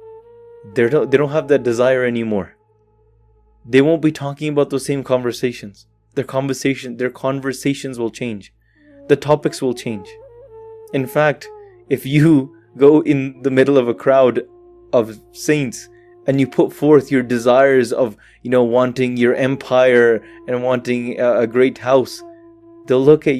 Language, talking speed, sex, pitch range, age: English, 155 wpm, male, 120-150 Hz, 20-39